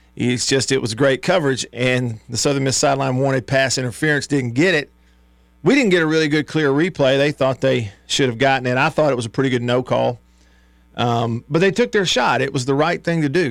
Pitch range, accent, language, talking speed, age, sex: 110-150 Hz, American, English, 230 wpm, 40-59, male